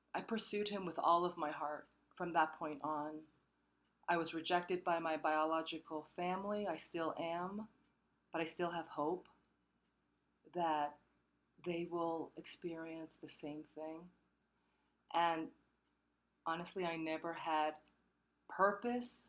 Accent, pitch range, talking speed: American, 155-220 Hz, 125 wpm